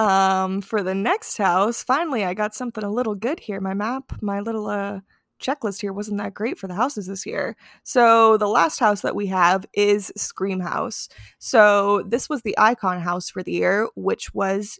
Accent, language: American, English